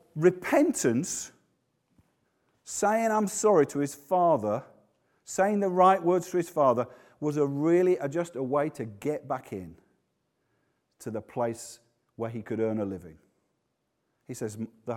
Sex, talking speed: male, 145 wpm